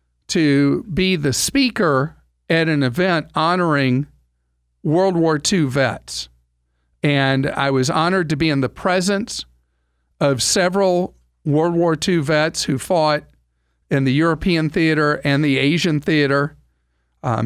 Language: English